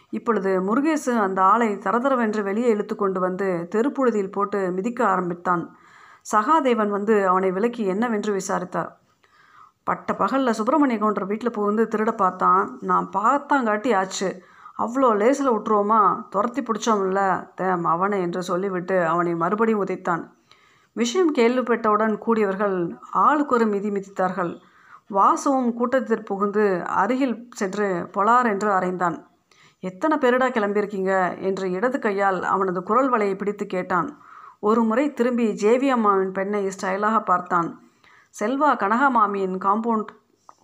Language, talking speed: Tamil, 110 wpm